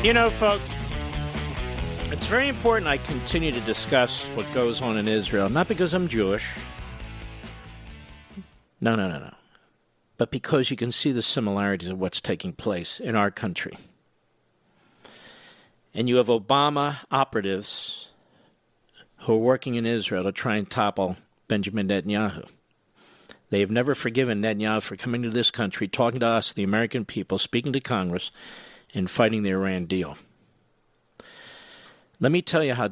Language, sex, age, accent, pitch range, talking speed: English, male, 50-69, American, 100-125 Hz, 150 wpm